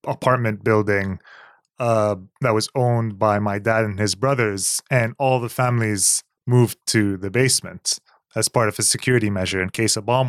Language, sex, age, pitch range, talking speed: English, male, 20-39, 105-125 Hz, 175 wpm